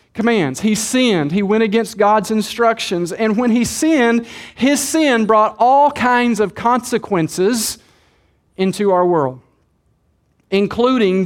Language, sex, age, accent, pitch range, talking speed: English, male, 40-59, American, 200-255 Hz, 125 wpm